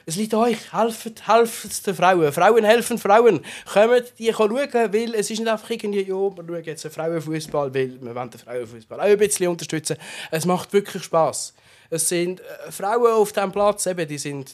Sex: male